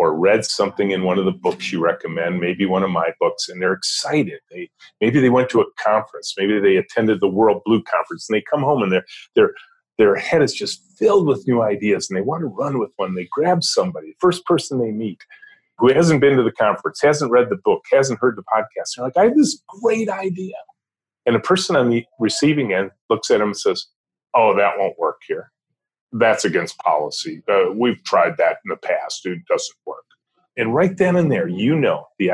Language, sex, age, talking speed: English, male, 40-59, 225 wpm